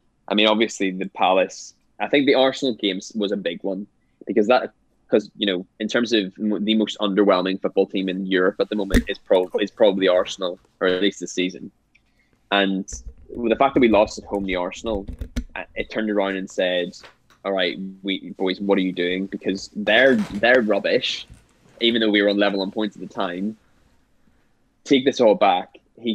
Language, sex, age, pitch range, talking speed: English, male, 10-29, 95-110 Hz, 195 wpm